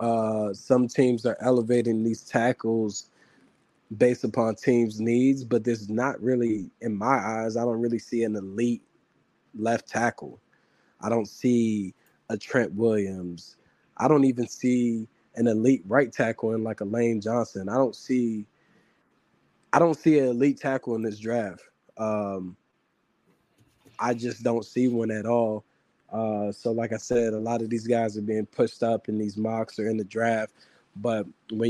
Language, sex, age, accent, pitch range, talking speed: English, male, 20-39, American, 110-125 Hz, 165 wpm